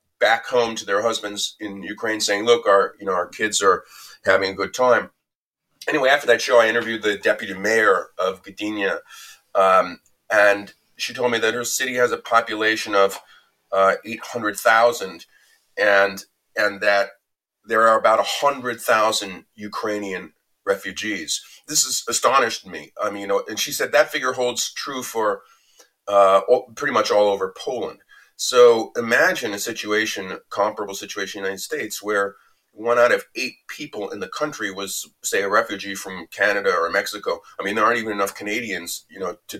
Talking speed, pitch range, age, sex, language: 175 wpm, 100-120 Hz, 30-49, male, English